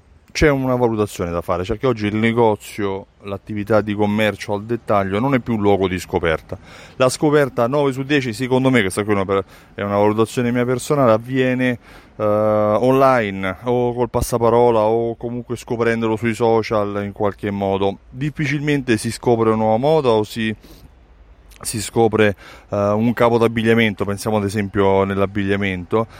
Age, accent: 30-49, native